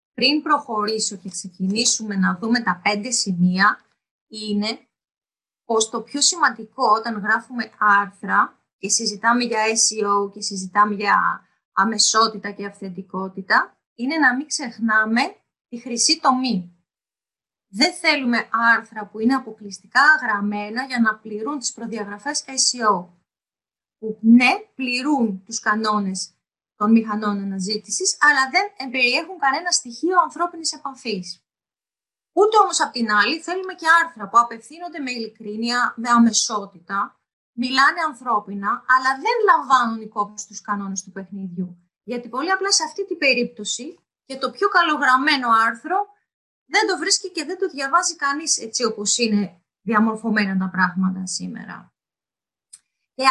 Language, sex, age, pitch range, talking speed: Greek, female, 20-39, 210-285 Hz, 130 wpm